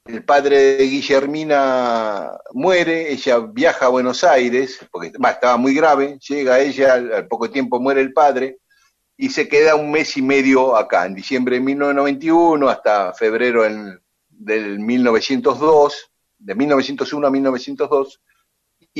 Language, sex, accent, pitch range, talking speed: Spanish, male, Argentinian, 130-215 Hz, 140 wpm